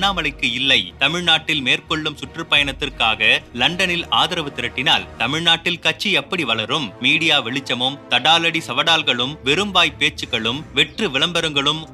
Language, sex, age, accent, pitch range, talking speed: Tamil, male, 30-49, native, 135-160 Hz, 85 wpm